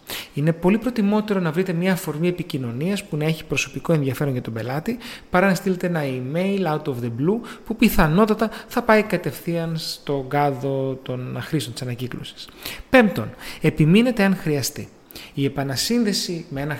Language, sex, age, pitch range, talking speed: Greek, male, 30-49, 140-185 Hz, 155 wpm